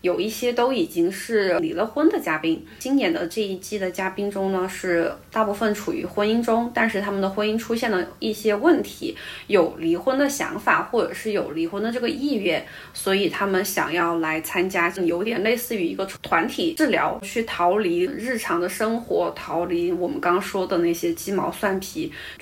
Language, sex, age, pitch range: Chinese, female, 20-39, 185-245 Hz